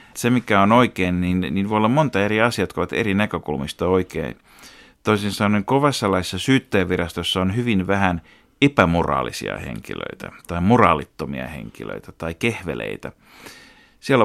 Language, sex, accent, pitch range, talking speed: Finnish, male, native, 85-105 Hz, 140 wpm